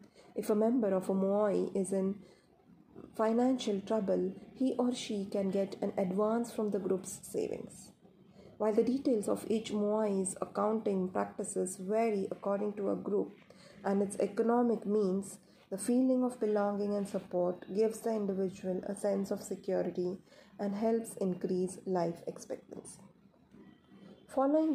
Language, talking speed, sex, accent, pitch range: Marathi, 140 wpm, female, native, 190-220 Hz